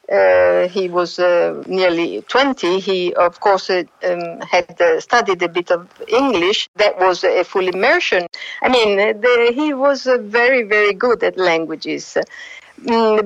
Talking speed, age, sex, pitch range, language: 165 wpm, 50-69, female, 200-270 Hz, English